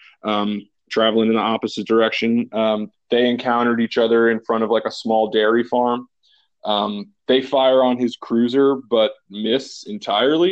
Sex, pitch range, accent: male, 110-130 Hz, American